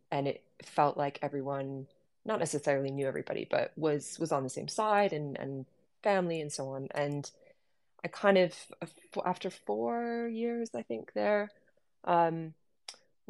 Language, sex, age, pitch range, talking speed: English, female, 20-39, 140-170 Hz, 150 wpm